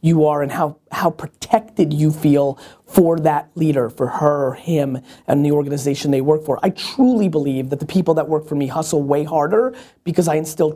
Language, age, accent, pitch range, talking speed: English, 30-49, American, 150-180 Hz, 200 wpm